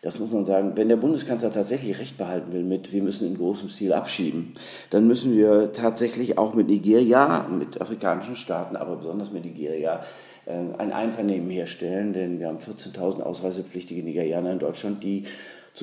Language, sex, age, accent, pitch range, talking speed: German, male, 50-69, German, 90-105 Hz, 170 wpm